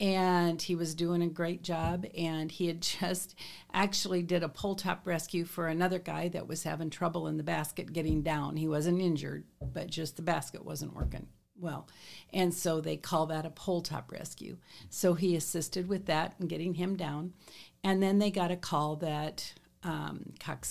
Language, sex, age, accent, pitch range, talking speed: English, female, 50-69, American, 155-180 Hz, 185 wpm